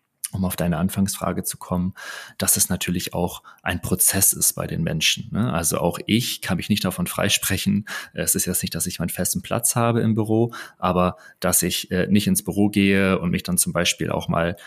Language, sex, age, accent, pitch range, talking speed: German, male, 30-49, German, 90-110 Hz, 205 wpm